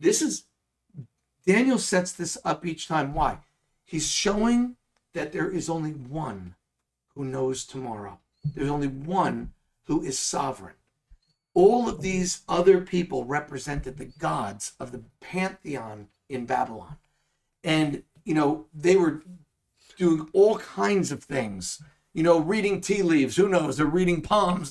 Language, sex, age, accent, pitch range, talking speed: English, male, 50-69, American, 140-170 Hz, 140 wpm